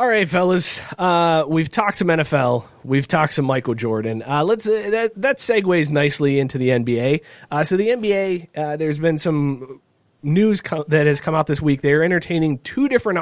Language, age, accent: English, 30-49, American